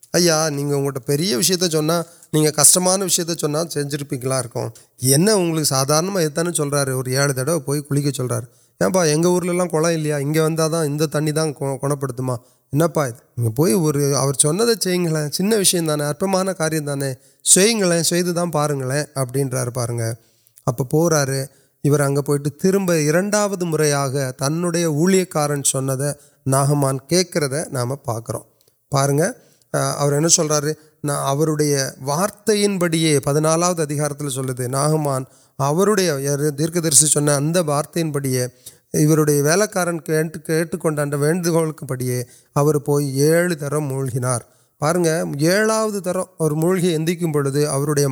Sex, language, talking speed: male, Urdu, 75 wpm